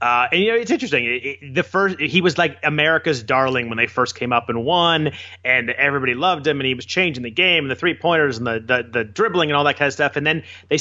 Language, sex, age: English, male, 30-49